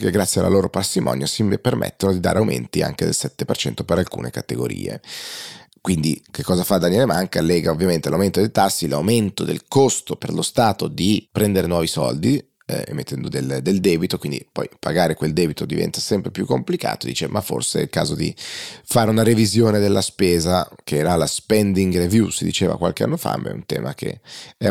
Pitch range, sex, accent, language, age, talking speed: 85-105 Hz, male, native, Italian, 30-49, 190 wpm